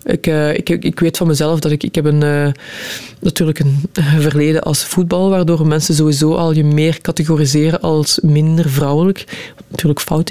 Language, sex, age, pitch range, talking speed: Dutch, female, 20-39, 155-185 Hz, 175 wpm